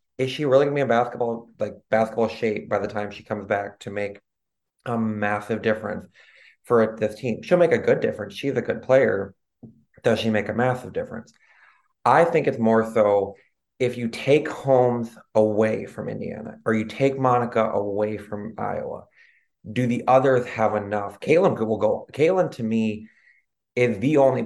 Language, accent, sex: English, American, male